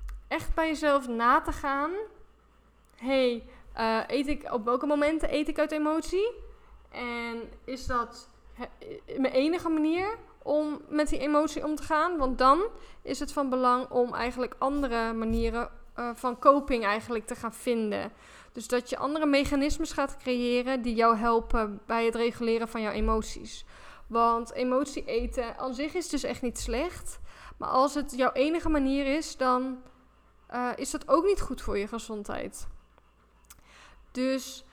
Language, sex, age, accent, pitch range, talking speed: Dutch, female, 10-29, Dutch, 245-300 Hz, 155 wpm